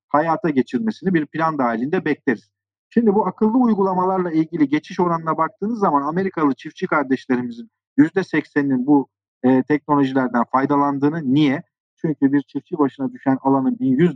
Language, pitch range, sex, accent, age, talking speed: Turkish, 130-175 Hz, male, native, 50-69, 130 wpm